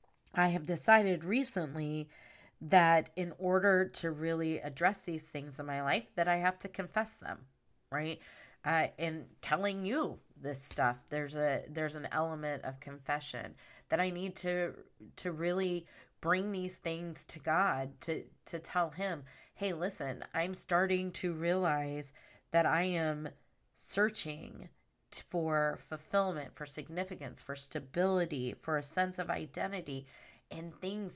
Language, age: English, 20-39